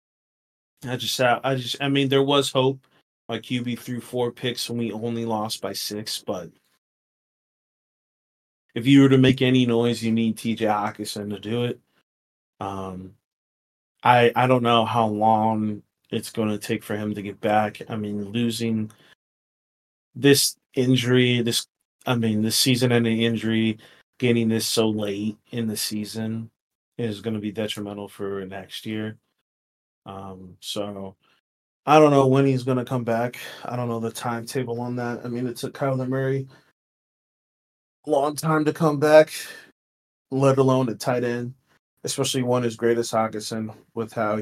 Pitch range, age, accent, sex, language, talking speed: 105-125 Hz, 30-49, American, male, English, 165 wpm